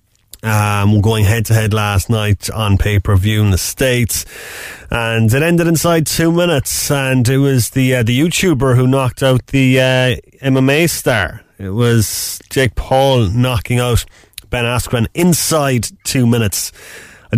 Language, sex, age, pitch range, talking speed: English, male, 30-49, 100-125 Hz, 150 wpm